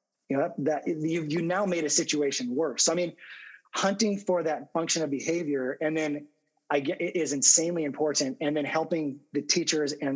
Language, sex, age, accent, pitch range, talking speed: English, male, 30-49, American, 145-165 Hz, 200 wpm